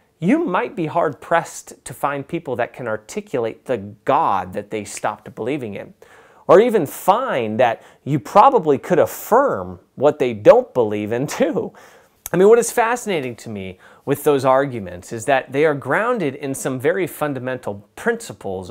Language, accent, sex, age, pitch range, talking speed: English, American, male, 30-49, 120-185 Hz, 165 wpm